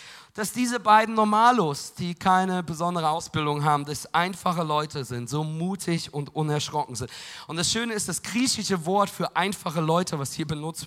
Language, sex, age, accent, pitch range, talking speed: German, male, 40-59, German, 160-230 Hz, 170 wpm